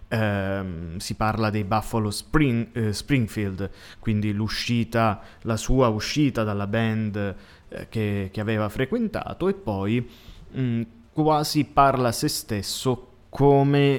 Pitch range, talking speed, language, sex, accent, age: 105-130 Hz, 105 wpm, Italian, male, native, 20-39